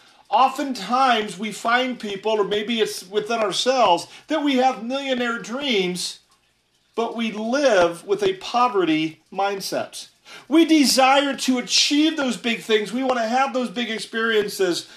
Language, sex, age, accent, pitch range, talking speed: English, male, 40-59, American, 160-240 Hz, 140 wpm